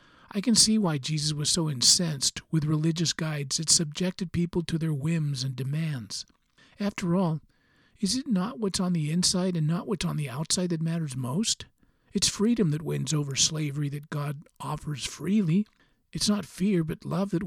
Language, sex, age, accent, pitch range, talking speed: English, male, 50-69, American, 145-180 Hz, 180 wpm